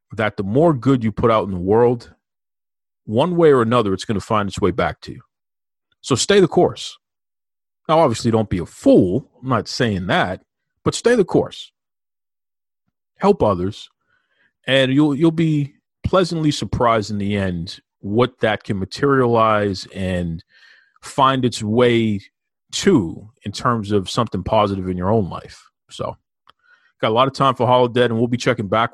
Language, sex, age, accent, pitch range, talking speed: English, male, 40-59, American, 100-125 Hz, 175 wpm